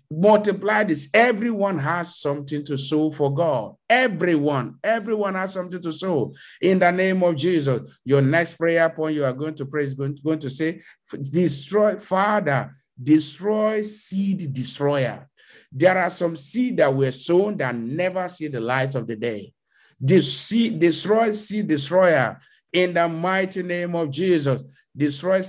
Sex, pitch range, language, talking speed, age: male, 150-185 Hz, English, 155 wpm, 50-69